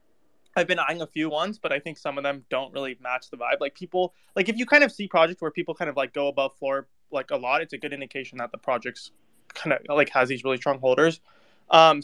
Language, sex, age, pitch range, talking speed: English, male, 20-39, 140-170 Hz, 265 wpm